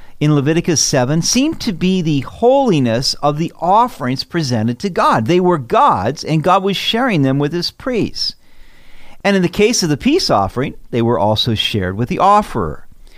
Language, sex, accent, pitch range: English, male, American, 120-195 Hz